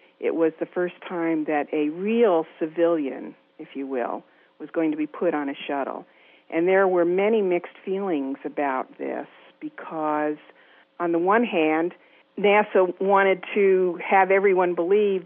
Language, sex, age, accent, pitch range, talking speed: English, female, 50-69, American, 160-190 Hz, 155 wpm